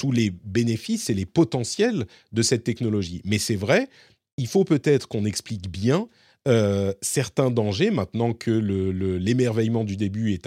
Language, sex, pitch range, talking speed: French, male, 100-140 Hz, 165 wpm